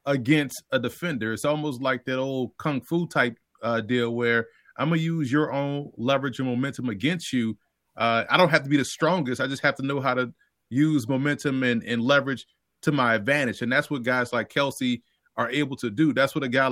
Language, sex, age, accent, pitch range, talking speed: English, male, 30-49, American, 125-150 Hz, 220 wpm